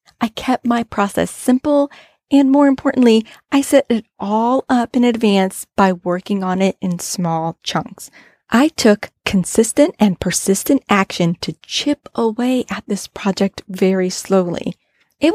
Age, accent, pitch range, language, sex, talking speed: 30-49, American, 195-255 Hz, English, female, 145 wpm